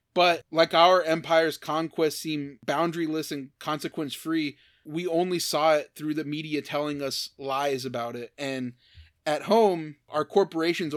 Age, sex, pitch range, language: 20-39, male, 135-155 Hz, English